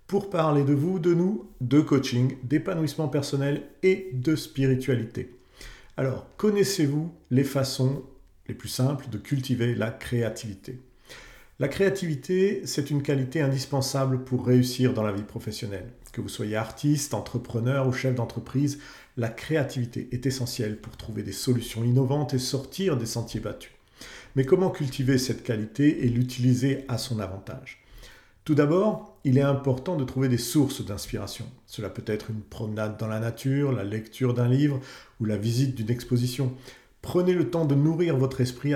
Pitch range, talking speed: 120-140 Hz, 160 wpm